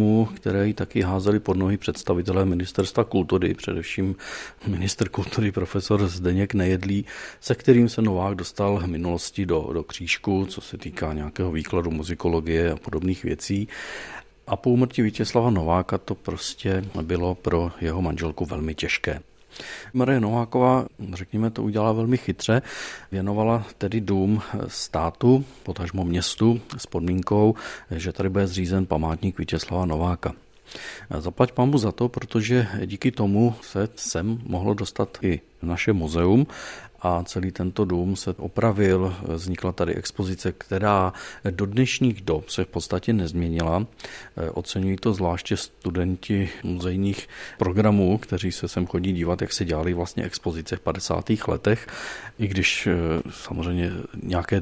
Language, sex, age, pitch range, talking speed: Czech, male, 40-59, 90-110 Hz, 135 wpm